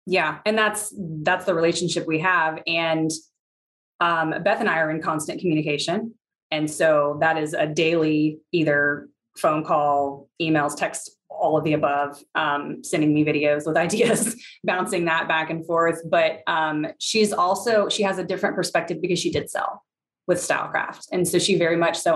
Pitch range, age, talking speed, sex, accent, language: 155-195 Hz, 20-39, 175 wpm, female, American, English